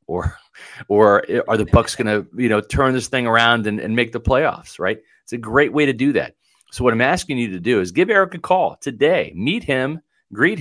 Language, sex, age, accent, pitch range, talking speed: English, male, 40-59, American, 105-140 Hz, 240 wpm